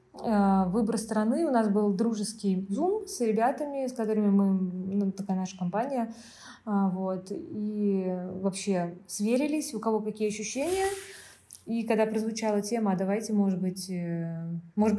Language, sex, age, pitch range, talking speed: Russian, female, 20-39, 195-235 Hz, 130 wpm